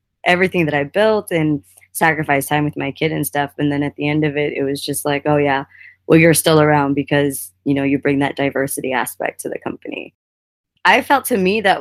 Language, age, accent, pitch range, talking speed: English, 20-39, American, 140-185 Hz, 230 wpm